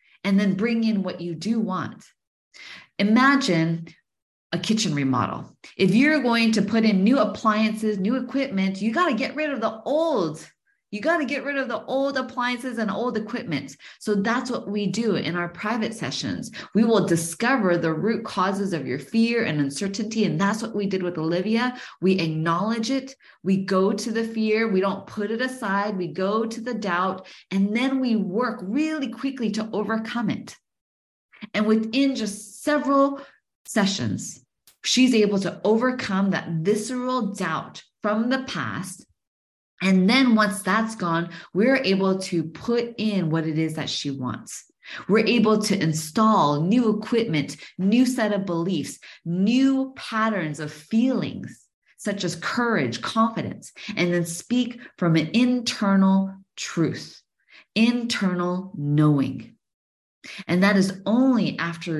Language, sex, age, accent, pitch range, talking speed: English, female, 20-39, American, 175-235 Hz, 155 wpm